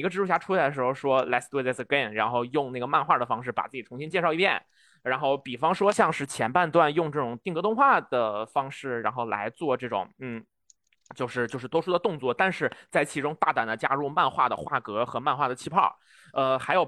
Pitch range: 115-170 Hz